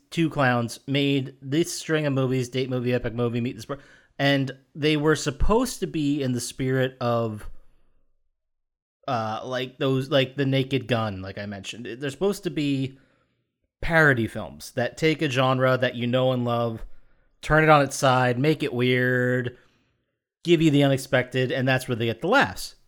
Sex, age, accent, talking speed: male, 30-49, American, 180 wpm